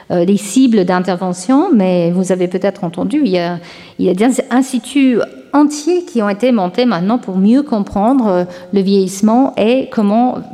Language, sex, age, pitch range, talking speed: French, female, 50-69, 205-260 Hz, 165 wpm